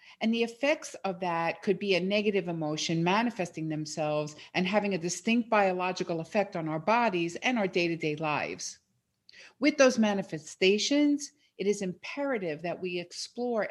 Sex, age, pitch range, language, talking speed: female, 50-69, 155-215 Hz, English, 150 wpm